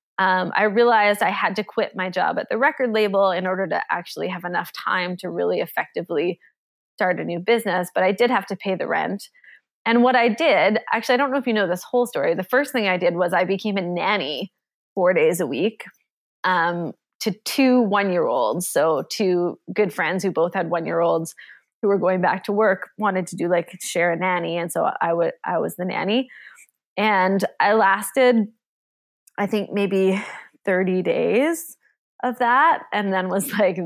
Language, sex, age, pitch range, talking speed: English, female, 20-39, 180-235 Hz, 195 wpm